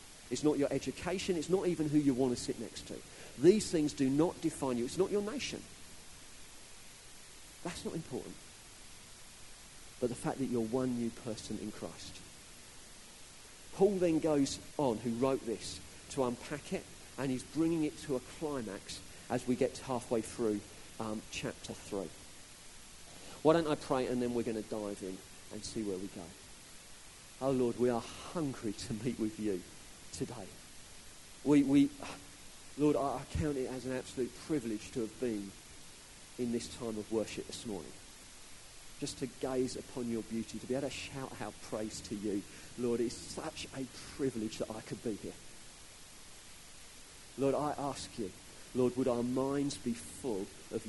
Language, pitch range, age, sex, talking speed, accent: English, 105-135 Hz, 40-59, male, 170 wpm, British